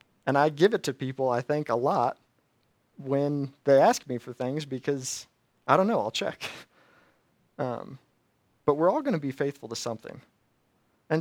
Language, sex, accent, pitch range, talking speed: English, male, American, 120-145 Hz, 175 wpm